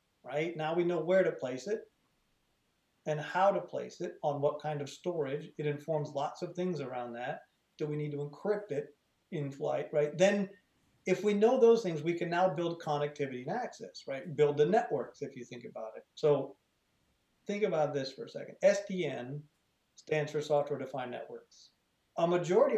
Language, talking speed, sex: English, 185 wpm, male